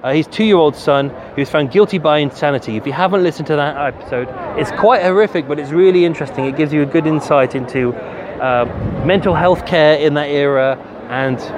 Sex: male